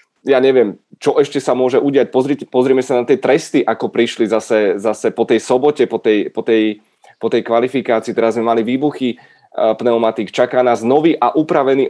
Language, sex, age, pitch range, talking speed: Czech, male, 30-49, 120-150 Hz, 175 wpm